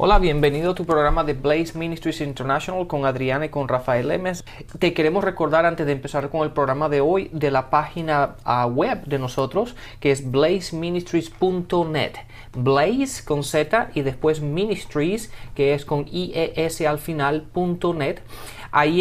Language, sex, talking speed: Spanish, male, 160 wpm